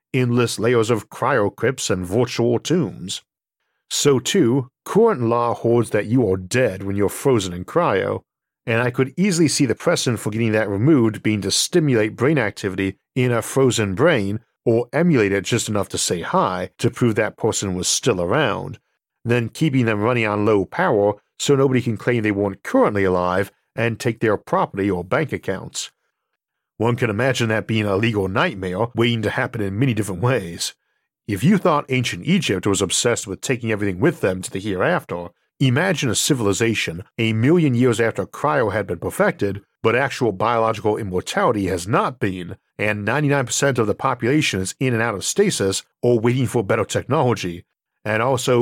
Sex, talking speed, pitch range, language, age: male, 180 wpm, 100-130 Hz, English, 50-69